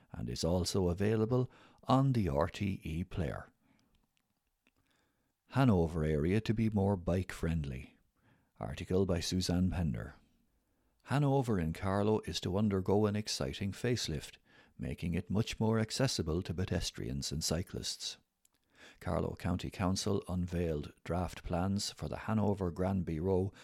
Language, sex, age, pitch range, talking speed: English, male, 60-79, 80-105 Hz, 120 wpm